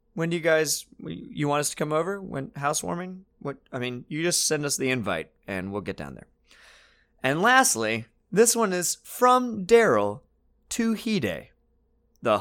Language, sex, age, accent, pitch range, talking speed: English, male, 30-49, American, 95-155 Hz, 175 wpm